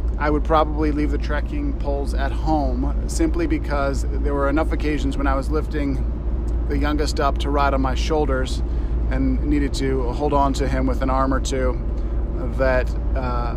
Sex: male